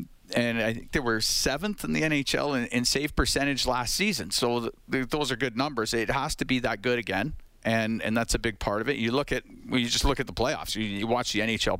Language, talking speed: English, 265 wpm